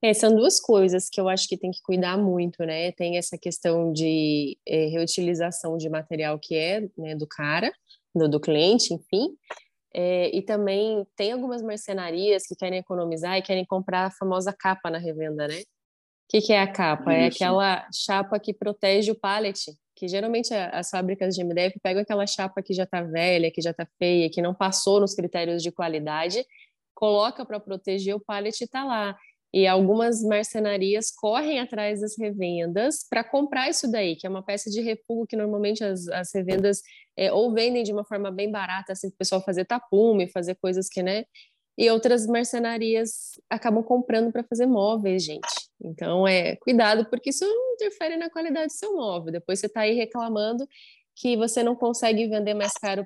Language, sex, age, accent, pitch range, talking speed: Portuguese, female, 20-39, Brazilian, 185-225 Hz, 185 wpm